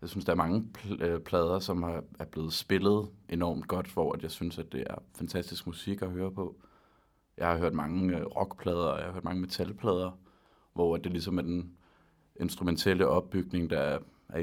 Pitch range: 90-105 Hz